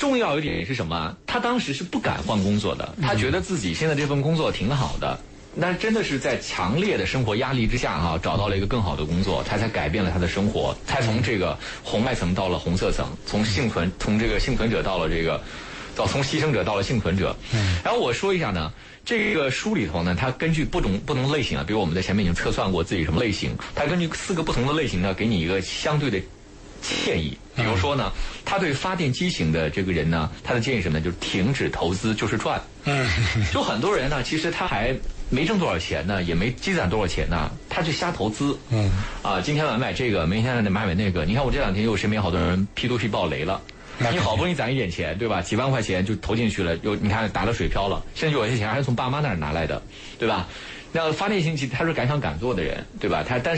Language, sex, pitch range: Chinese, male, 95-135 Hz